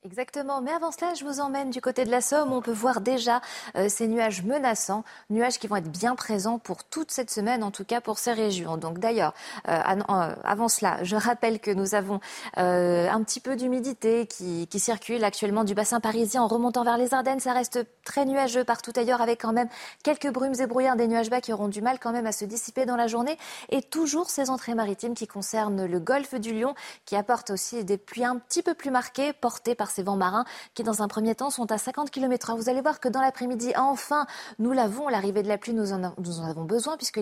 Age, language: 30-49, French